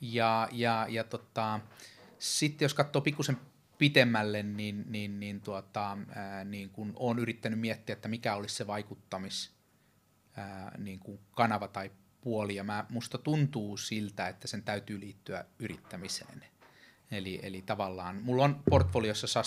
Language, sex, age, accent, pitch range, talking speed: Finnish, male, 30-49, native, 95-115 Hz, 135 wpm